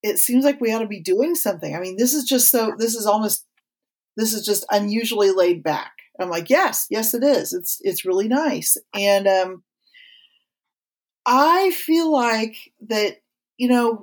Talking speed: 180 wpm